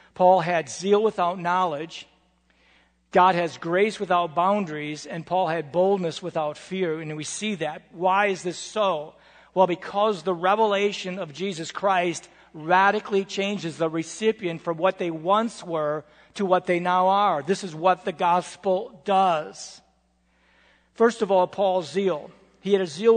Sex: male